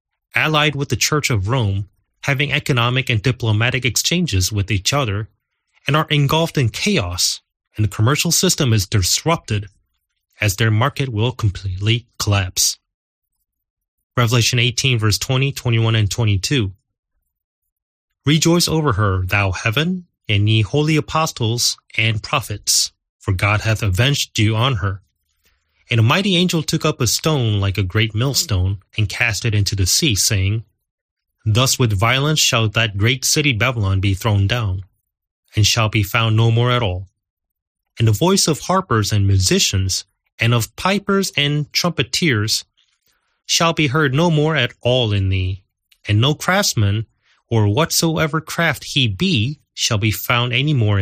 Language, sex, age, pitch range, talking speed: English, male, 30-49, 100-140 Hz, 155 wpm